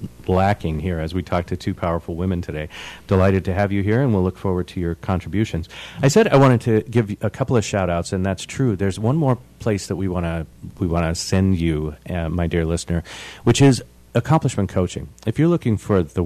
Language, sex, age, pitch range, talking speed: English, male, 40-59, 85-105 Hz, 235 wpm